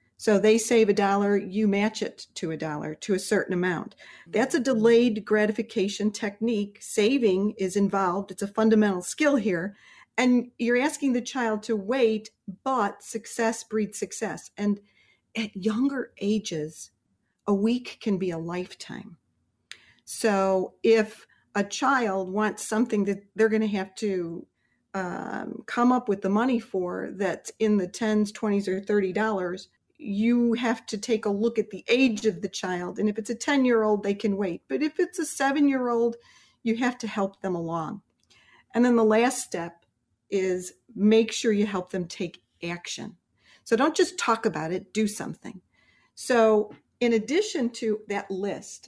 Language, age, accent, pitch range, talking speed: English, 40-59, American, 190-230 Hz, 165 wpm